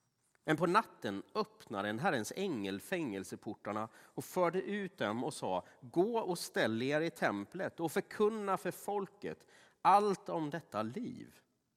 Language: Swedish